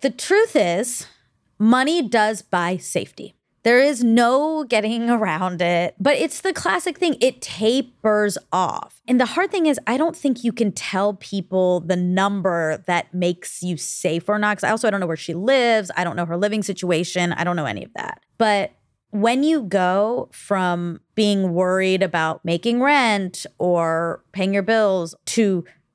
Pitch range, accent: 180-255 Hz, American